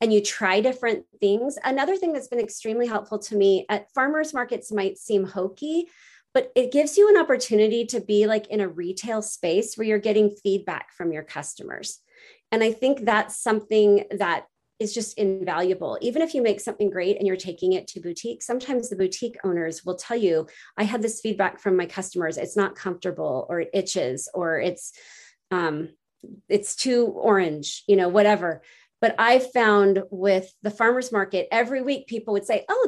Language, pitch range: English, 185-235 Hz